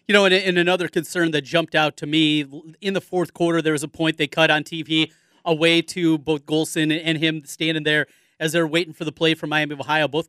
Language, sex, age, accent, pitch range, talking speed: English, male, 30-49, American, 155-175 Hz, 245 wpm